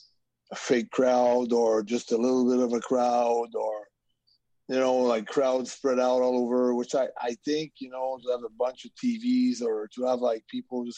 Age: 30-49